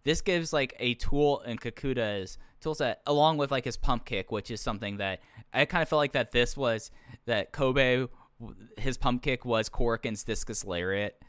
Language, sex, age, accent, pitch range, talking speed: English, male, 10-29, American, 105-140 Hz, 190 wpm